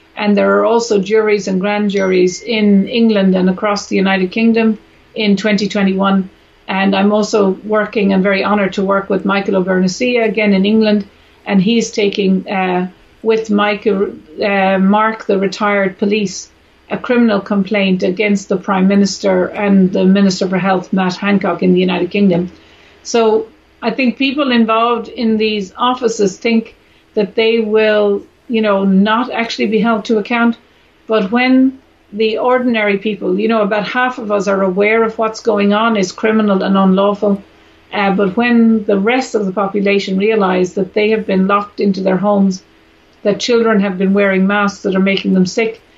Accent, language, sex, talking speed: Swedish, English, female, 170 wpm